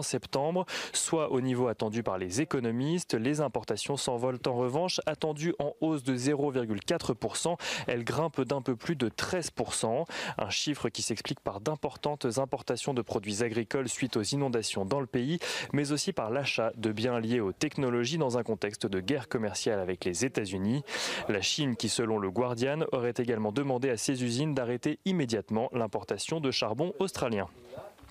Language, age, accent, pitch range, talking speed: French, 30-49, French, 115-145 Hz, 165 wpm